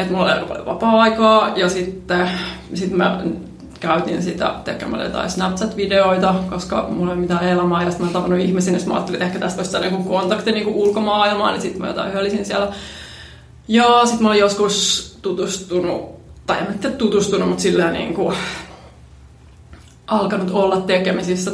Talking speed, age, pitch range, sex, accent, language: 165 wpm, 20-39, 180-210 Hz, female, native, Finnish